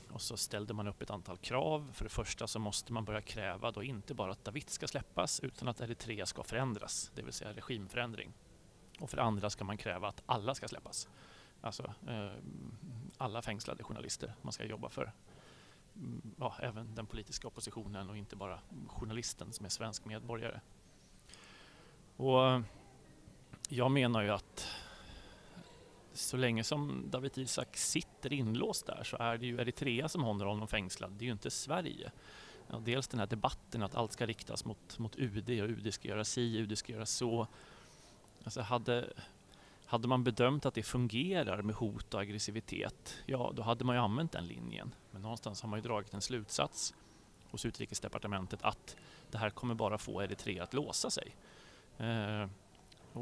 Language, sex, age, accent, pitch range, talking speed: Swedish, male, 30-49, native, 105-125 Hz, 175 wpm